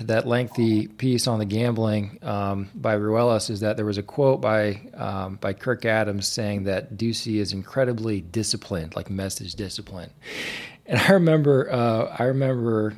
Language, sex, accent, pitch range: English, male, American, 105-130 Hz